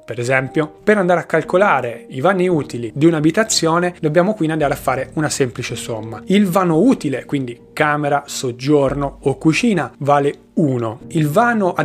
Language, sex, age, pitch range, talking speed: Italian, male, 30-49, 135-175 Hz, 160 wpm